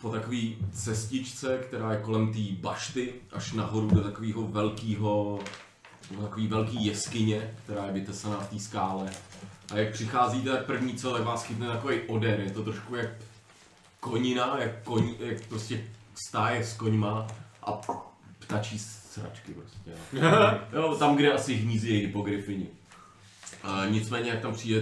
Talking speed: 140 wpm